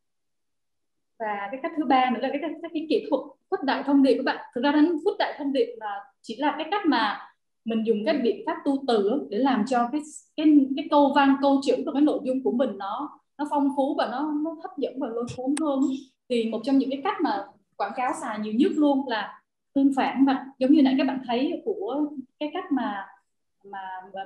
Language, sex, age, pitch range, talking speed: Vietnamese, female, 20-39, 230-290 Hz, 235 wpm